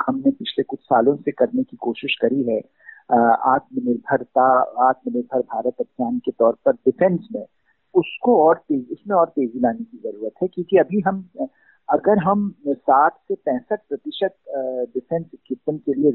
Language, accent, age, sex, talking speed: Hindi, native, 50-69, male, 140 wpm